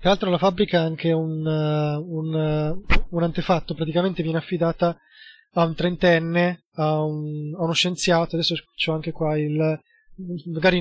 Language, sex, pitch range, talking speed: Italian, male, 160-185 Hz, 160 wpm